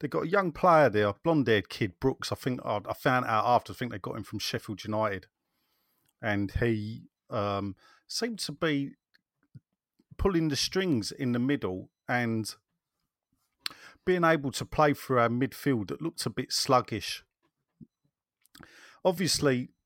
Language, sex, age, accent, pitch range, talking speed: English, male, 40-59, British, 105-140 Hz, 150 wpm